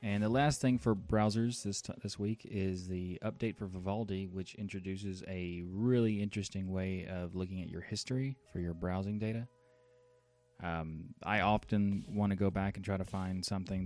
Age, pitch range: 20-39, 90-105 Hz